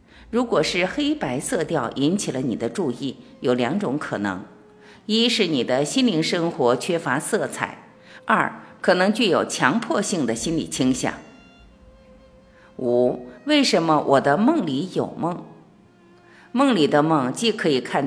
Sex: female